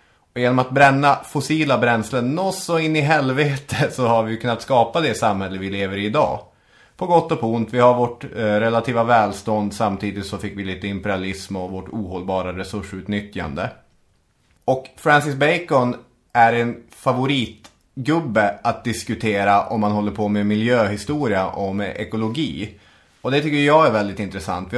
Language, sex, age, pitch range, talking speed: English, male, 30-49, 100-130 Hz, 165 wpm